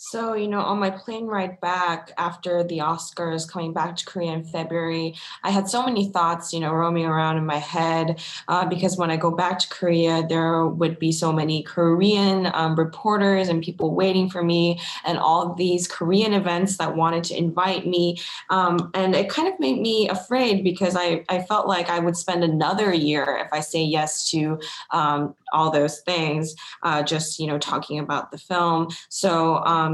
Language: English